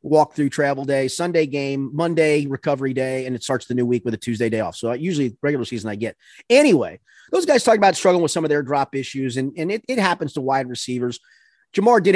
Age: 30-49